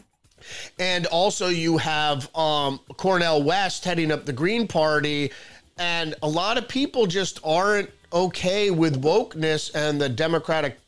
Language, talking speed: English, 140 wpm